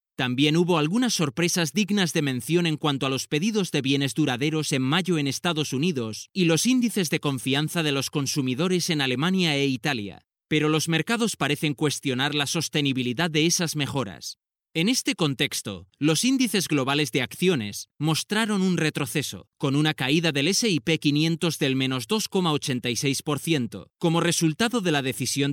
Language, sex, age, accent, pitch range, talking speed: Spanish, male, 20-39, Spanish, 135-175 Hz, 160 wpm